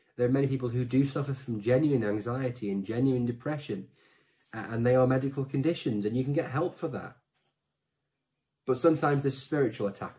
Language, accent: English, British